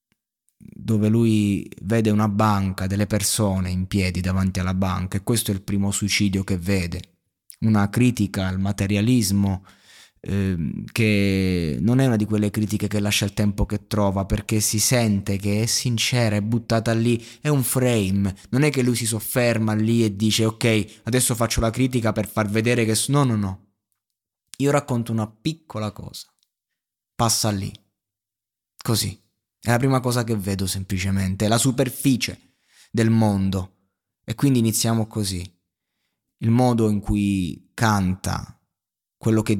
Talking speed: 155 wpm